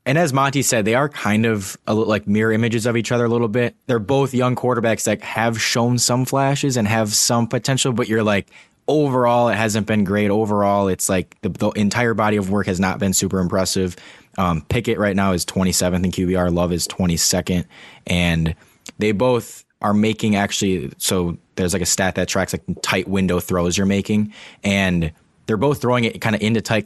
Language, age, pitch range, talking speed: English, 10-29, 90-110 Hz, 205 wpm